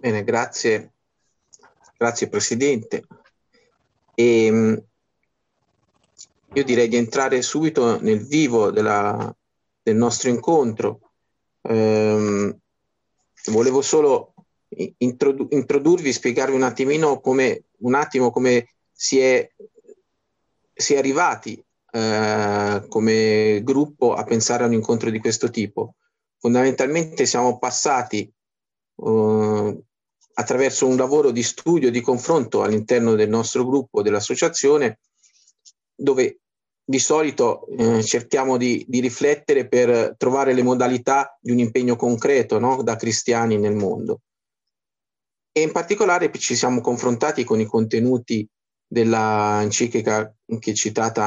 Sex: male